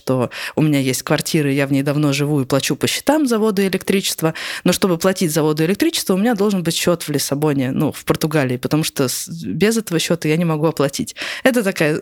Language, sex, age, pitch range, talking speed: Russian, female, 20-39, 155-200 Hz, 215 wpm